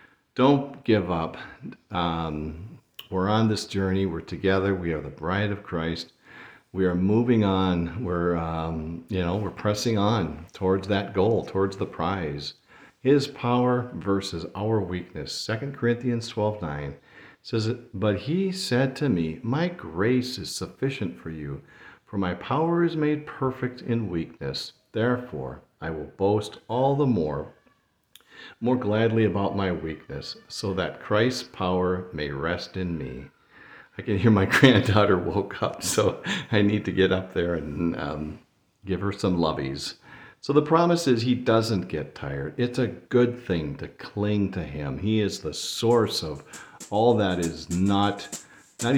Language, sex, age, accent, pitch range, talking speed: English, male, 50-69, American, 85-120 Hz, 155 wpm